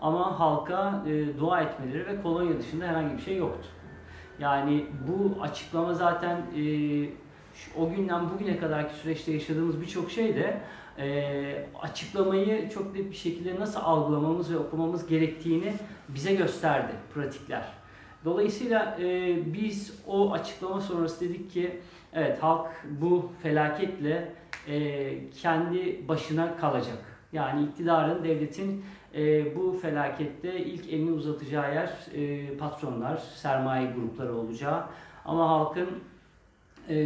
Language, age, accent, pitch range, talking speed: Turkish, 40-59, native, 150-185 Hz, 120 wpm